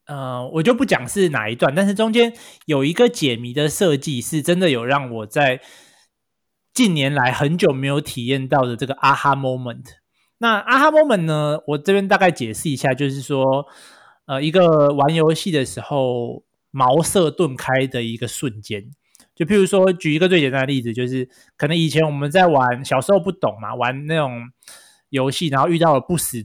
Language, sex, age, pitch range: Chinese, male, 20-39, 130-170 Hz